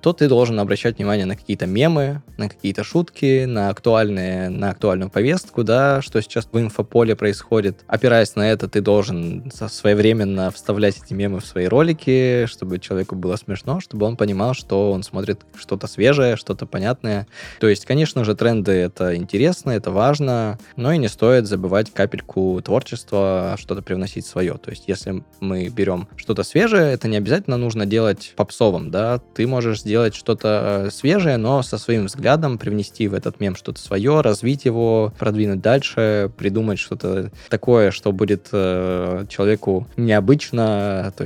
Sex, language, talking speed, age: male, Russian, 160 wpm, 20-39